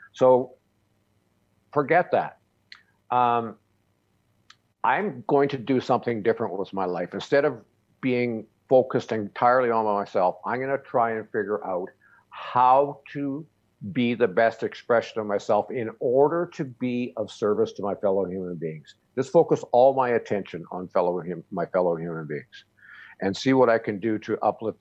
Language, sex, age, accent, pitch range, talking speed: English, male, 50-69, American, 100-125 Hz, 160 wpm